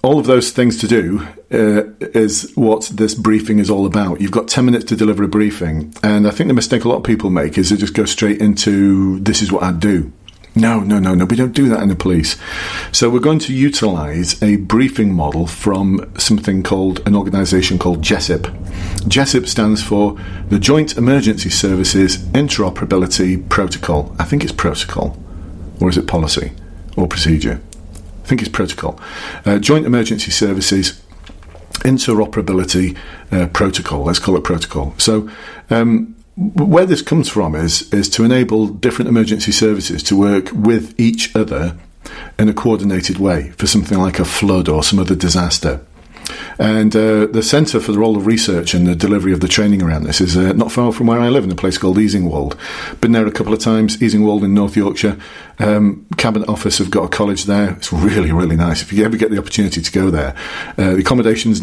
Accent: British